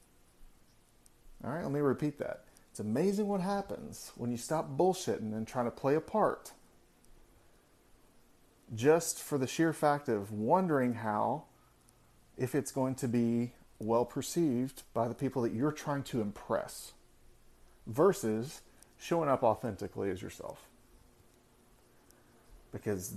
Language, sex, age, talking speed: English, male, 30-49, 125 wpm